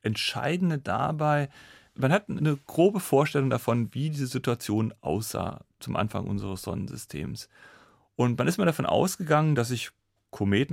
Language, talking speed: German, 140 wpm